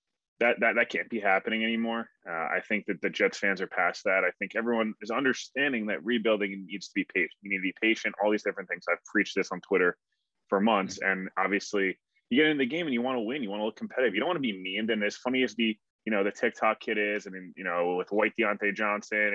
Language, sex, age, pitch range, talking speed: English, male, 20-39, 95-110 Hz, 265 wpm